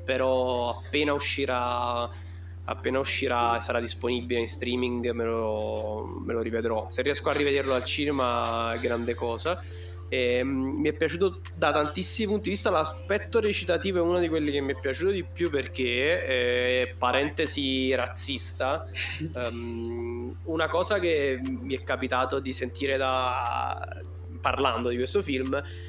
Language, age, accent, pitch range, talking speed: Italian, 20-39, native, 95-140 Hz, 145 wpm